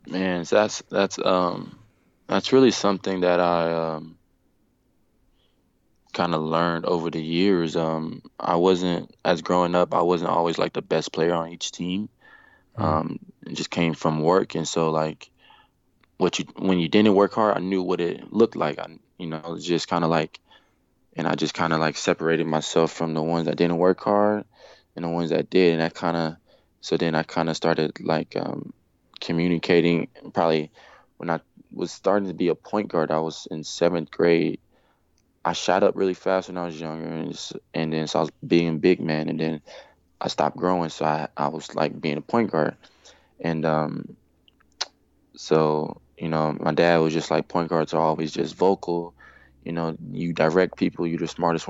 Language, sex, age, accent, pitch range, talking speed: English, male, 20-39, American, 80-90 Hz, 190 wpm